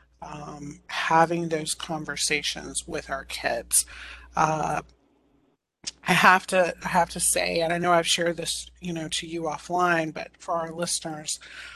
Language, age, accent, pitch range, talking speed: English, 30-49, American, 155-175 Hz, 155 wpm